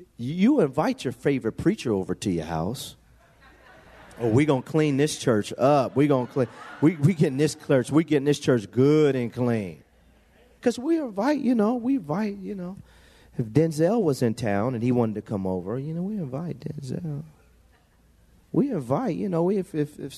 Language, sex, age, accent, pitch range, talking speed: English, male, 40-59, American, 105-165 Hz, 185 wpm